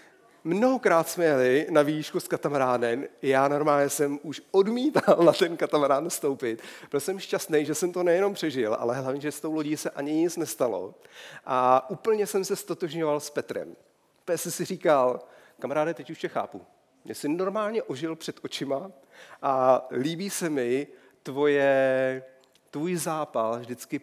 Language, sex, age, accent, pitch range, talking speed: Czech, male, 40-59, native, 130-170 Hz, 155 wpm